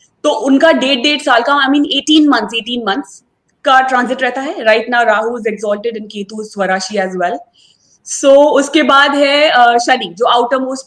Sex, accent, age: female, native, 20-39